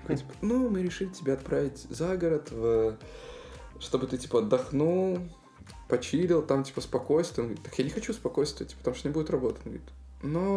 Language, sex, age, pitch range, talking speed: Russian, male, 20-39, 130-180 Hz, 170 wpm